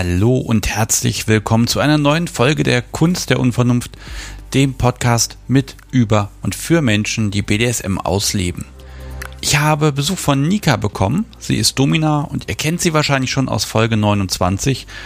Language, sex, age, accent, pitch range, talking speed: German, male, 40-59, German, 105-140 Hz, 160 wpm